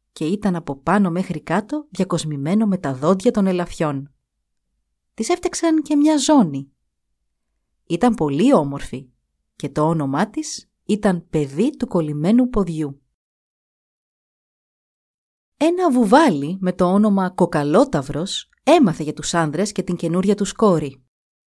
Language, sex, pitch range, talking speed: Greek, female, 150-225 Hz, 125 wpm